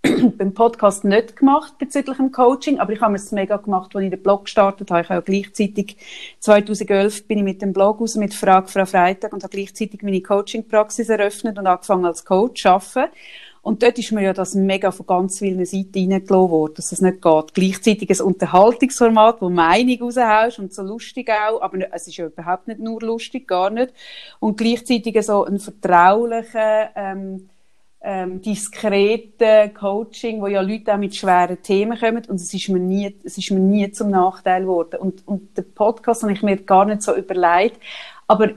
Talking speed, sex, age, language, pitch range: 190 wpm, female, 30-49, German, 195-235 Hz